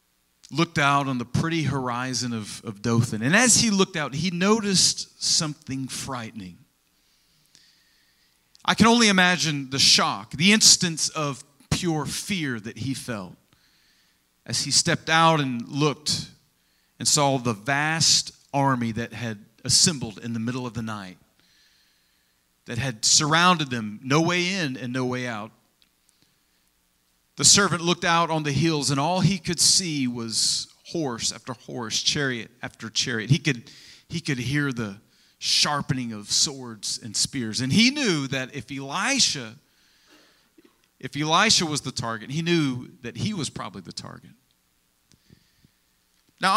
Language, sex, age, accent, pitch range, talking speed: English, male, 40-59, American, 110-160 Hz, 145 wpm